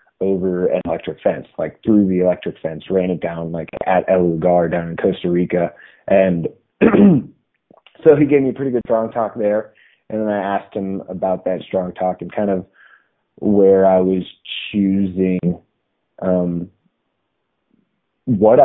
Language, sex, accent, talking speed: English, male, American, 160 wpm